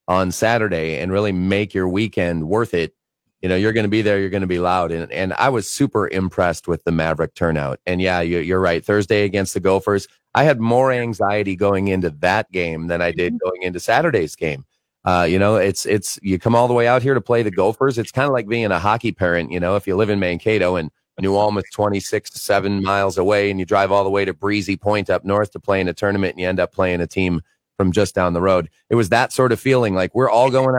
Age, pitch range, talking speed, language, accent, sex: 30-49, 90-110 Hz, 255 wpm, English, American, male